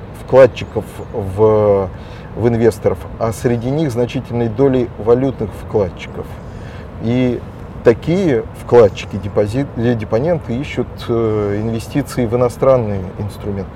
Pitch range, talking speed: 110-125 Hz, 85 wpm